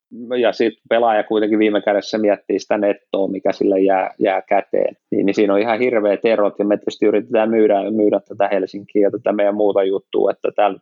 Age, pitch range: 20-39, 100-115 Hz